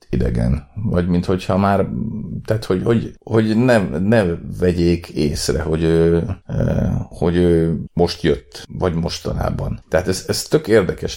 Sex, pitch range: male, 80-100 Hz